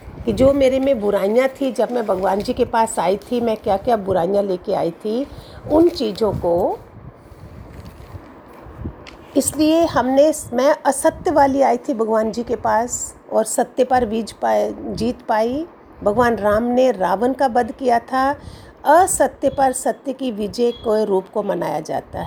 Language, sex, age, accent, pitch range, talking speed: Hindi, female, 50-69, native, 210-265 Hz, 160 wpm